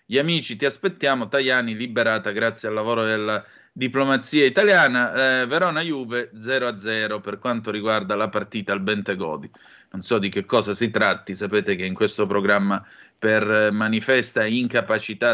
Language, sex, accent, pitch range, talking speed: Italian, male, native, 110-140 Hz, 155 wpm